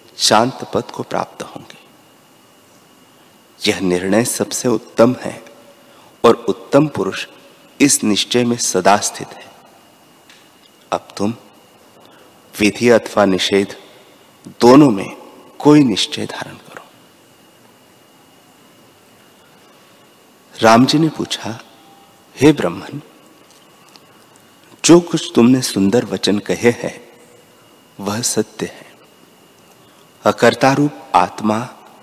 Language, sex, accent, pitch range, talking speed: Hindi, male, native, 100-135 Hz, 90 wpm